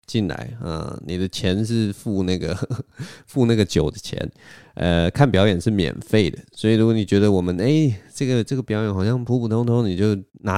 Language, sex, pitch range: Chinese, male, 95-120 Hz